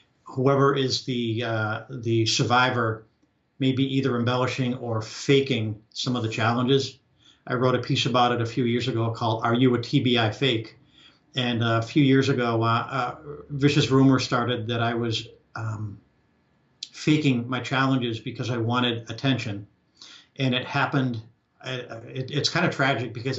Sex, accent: male, American